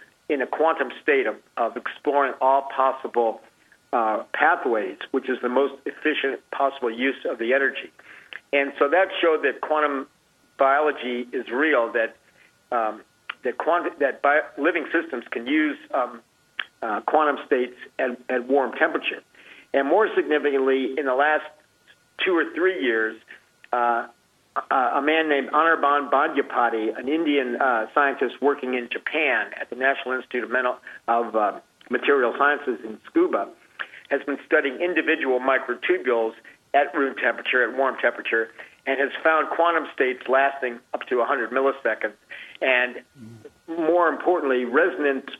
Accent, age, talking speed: American, 50-69, 145 wpm